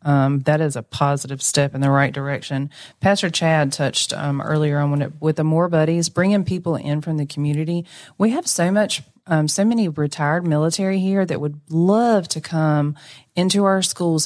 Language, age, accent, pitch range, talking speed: English, 30-49, American, 145-170 Hz, 180 wpm